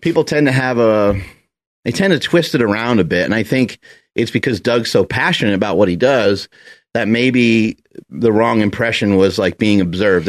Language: English